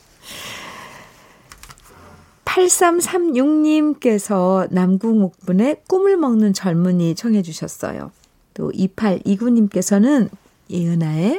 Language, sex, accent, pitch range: Korean, female, native, 185-275 Hz